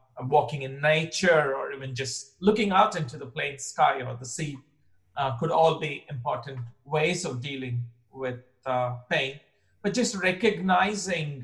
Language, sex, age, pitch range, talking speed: English, male, 50-69, 125-155 Hz, 150 wpm